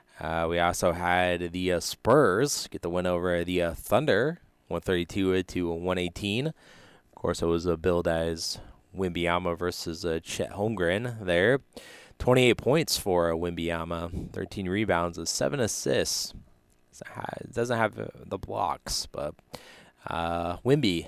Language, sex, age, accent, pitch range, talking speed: English, male, 20-39, American, 85-100 Hz, 135 wpm